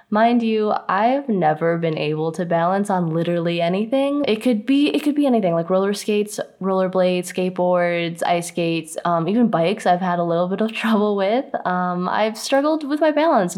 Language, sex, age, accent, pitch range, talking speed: English, female, 10-29, American, 170-220 Hz, 190 wpm